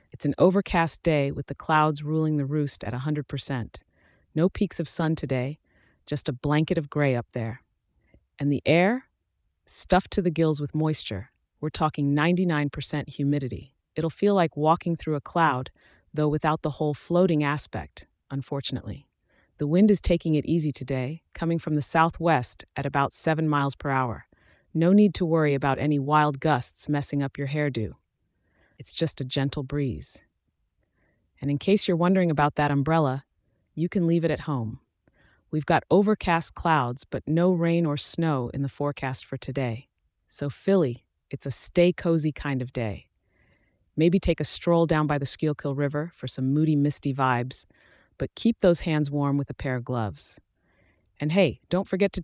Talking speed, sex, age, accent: 175 wpm, female, 30-49, American